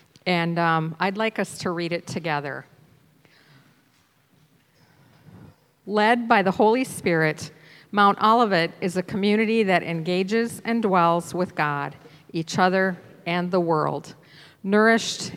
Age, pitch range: 50-69, 155-195 Hz